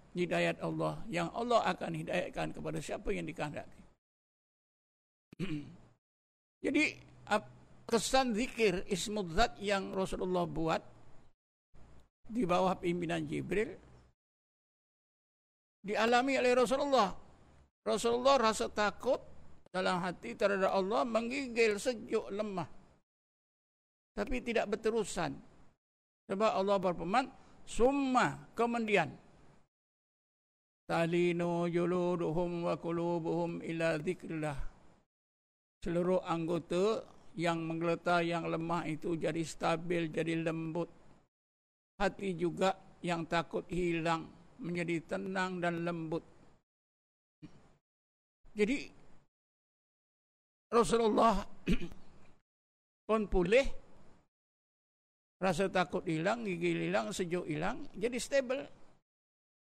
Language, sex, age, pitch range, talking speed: Malay, male, 60-79, 165-220 Hz, 80 wpm